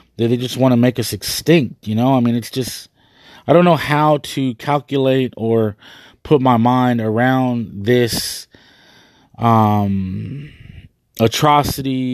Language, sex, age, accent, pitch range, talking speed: English, male, 20-39, American, 115-140 Hz, 135 wpm